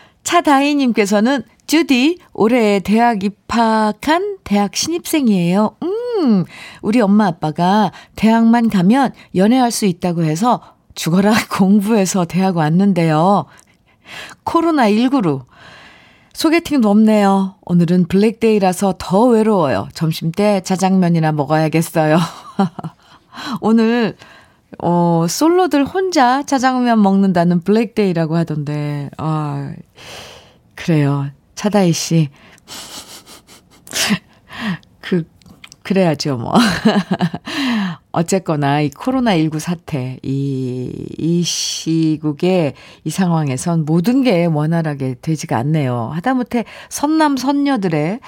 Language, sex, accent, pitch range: Korean, female, native, 160-230 Hz